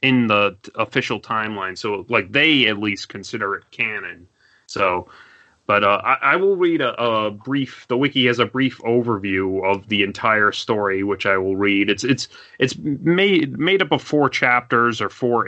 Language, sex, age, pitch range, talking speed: English, male, 30-49, 100-130 Hz, 180 wpm